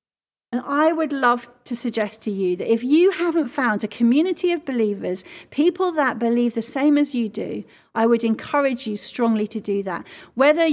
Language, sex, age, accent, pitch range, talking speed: English, female, 40-59, British, 210-275 Hz, 190 wpm